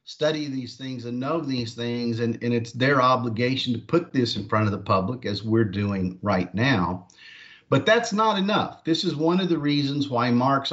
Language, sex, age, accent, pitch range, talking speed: English, male, 50-69, American, 115-140 Hz, 205 wpm